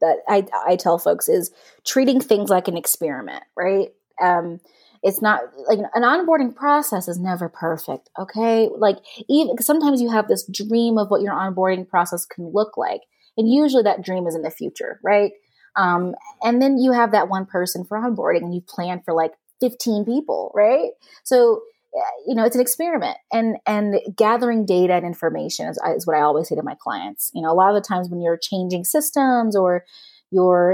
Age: 20-39